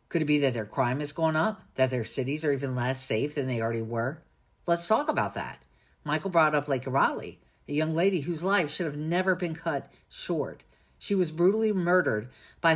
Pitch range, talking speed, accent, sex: 130-185 Hz, 210 wpm, American, female